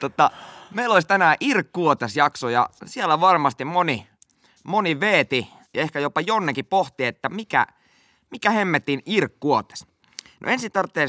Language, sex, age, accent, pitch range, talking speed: Finnish, male, 20-39, native, 110-145 Hz, 135 wpm